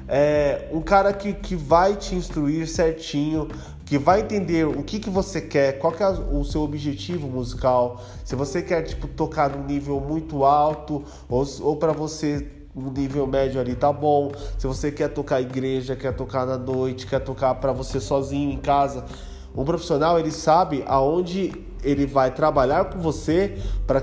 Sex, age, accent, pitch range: male, 20-39, Brazilian, 130-165 Hz